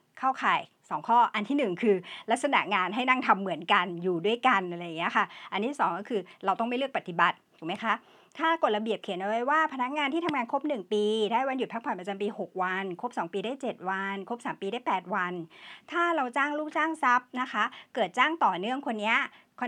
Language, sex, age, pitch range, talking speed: English, male, 60-79, 200-270 Hz, 60 wpm